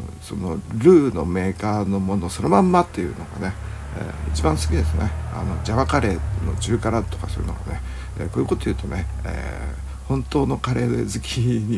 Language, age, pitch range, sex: Japanese, 60-79, 85-105 Hz, male